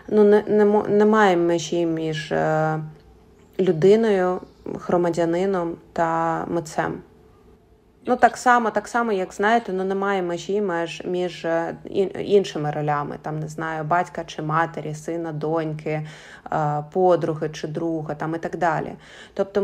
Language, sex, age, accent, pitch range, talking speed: Ukrainian, female, 20-39, native, 170-210 Hz, 115 wpm